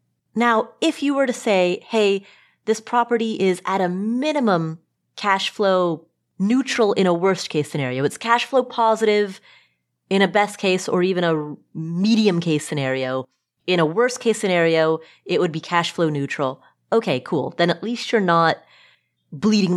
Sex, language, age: female, English, 30-49